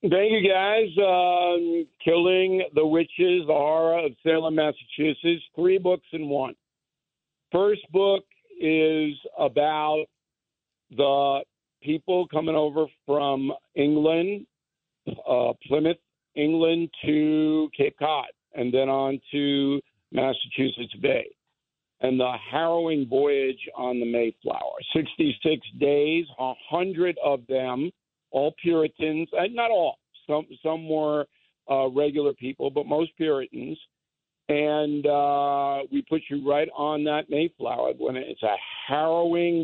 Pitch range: 145-175 Hz